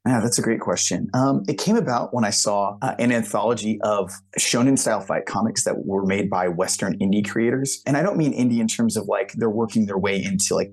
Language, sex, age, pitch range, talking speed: English, male, 30-49, 100-120 Hz, 235 wpm